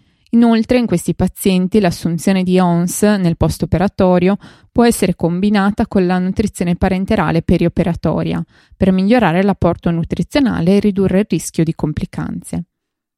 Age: 20-39